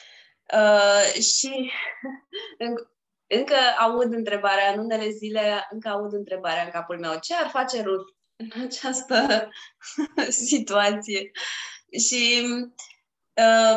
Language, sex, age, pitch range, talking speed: Romanian, female, 20-39, 185-250 Hz, 105 wpm